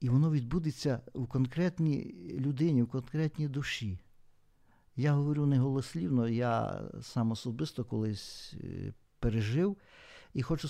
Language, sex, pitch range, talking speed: Ukrainian, male, 120-150 Hz, 105 wpm